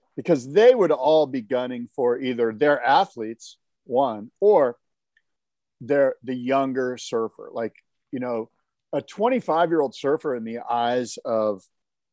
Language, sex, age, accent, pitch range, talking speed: English, male, 50-69, American, 120-180 Hz, 130 wpm